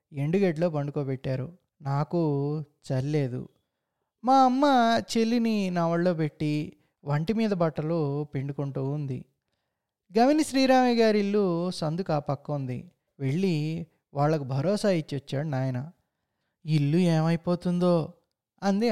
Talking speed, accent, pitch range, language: 90 wpm, native, 145-180 Hz, Telugu